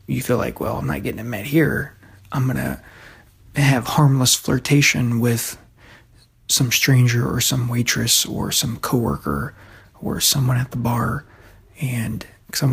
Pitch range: 110-135 Hz